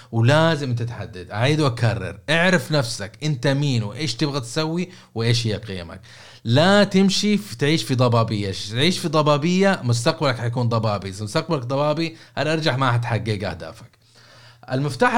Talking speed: 140 wpm